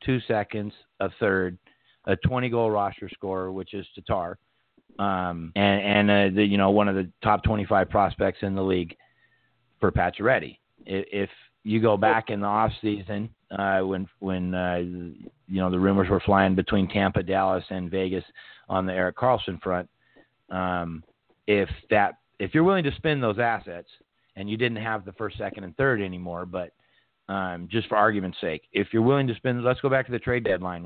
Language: English